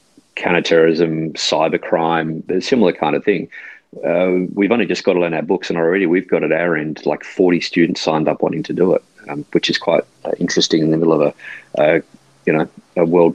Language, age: English, 30-49